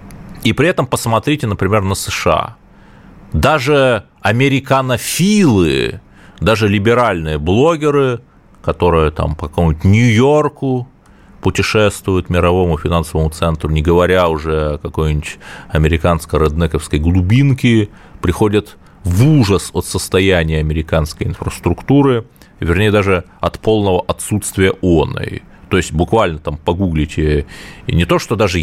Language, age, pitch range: Russian, 30-49, 85-115 Hz